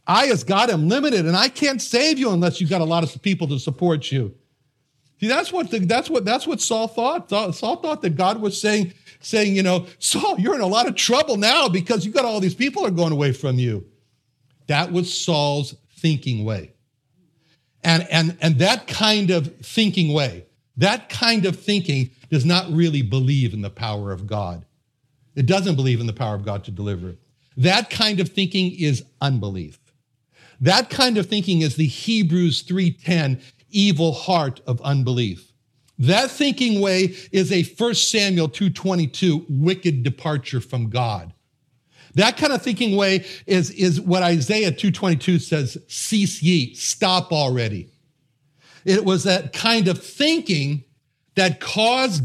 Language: English